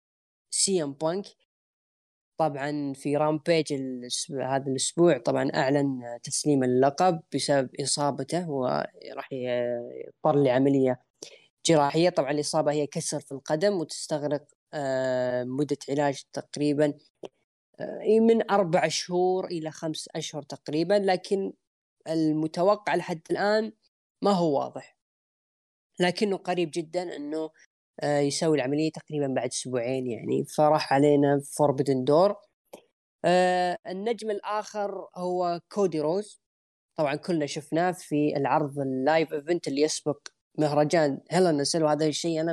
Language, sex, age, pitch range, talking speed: Arabic, female, 10-29, 140-170 Hz, 105 wpm